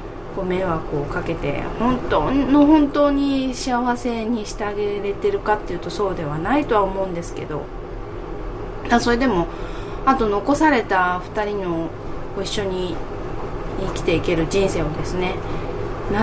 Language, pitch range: Japanese, 160-240 Hz